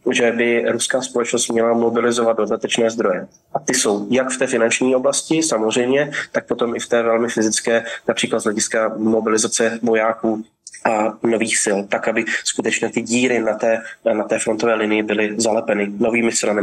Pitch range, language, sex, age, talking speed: 115-130 Hz, Slovak, male, 20-39, 170 wpm